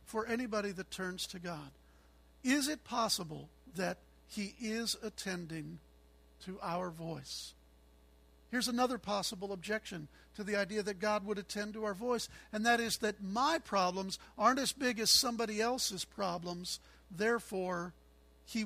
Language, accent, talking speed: English, American, 145 wpm